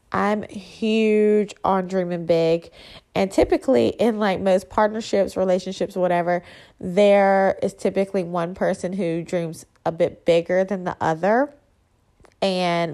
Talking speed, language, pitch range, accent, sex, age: 125 wpm, English, 175-205 Hz, American, female, 20-39